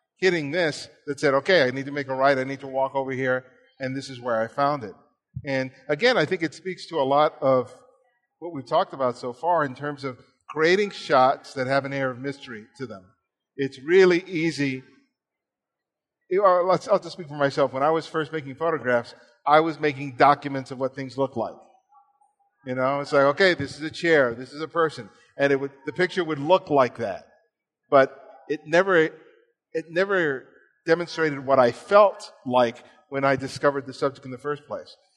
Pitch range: 135-175 Hz